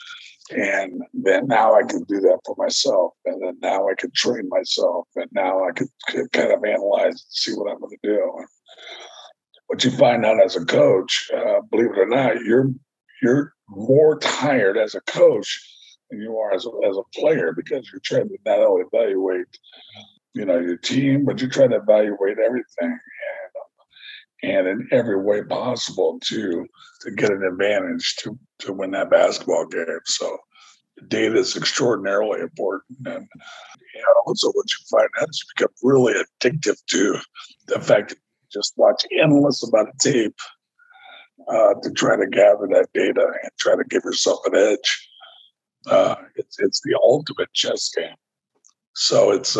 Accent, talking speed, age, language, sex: American, 170 wpm, 50-69, English, male